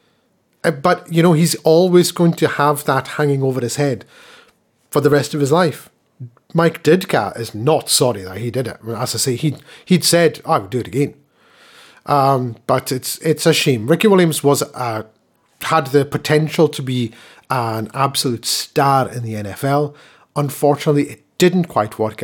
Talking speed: 180 wpm